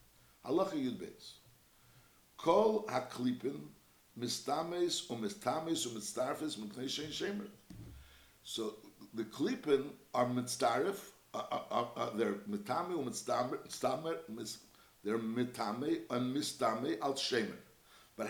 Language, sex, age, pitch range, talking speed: English, male, 60-79, 125-175 Hz, 60 wpm